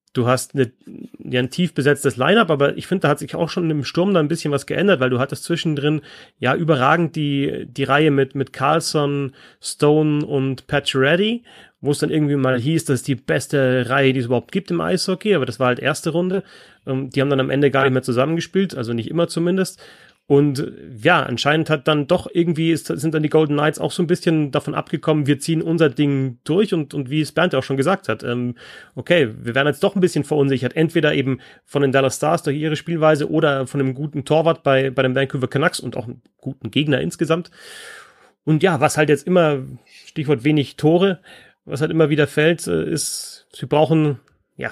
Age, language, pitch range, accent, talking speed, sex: 30-49, German, 130-160 Hz, German, 215 wpm, male